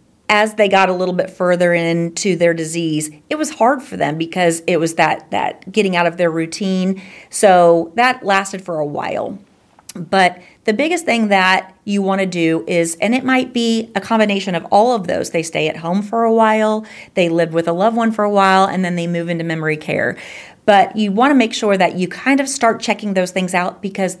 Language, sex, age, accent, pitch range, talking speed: English, female, 40-59, American, 175-210 Hz, 225 wpm